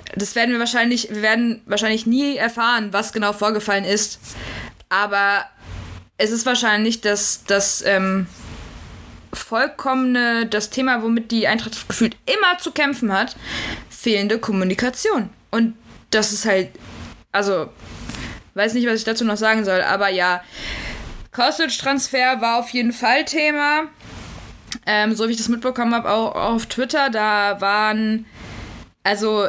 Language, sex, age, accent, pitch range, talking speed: German, female, 20-39, German, 200-245 Hz, 135 wpm